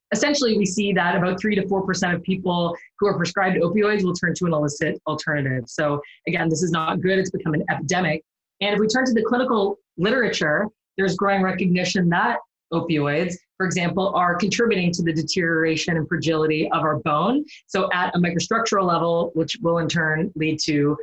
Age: 20-39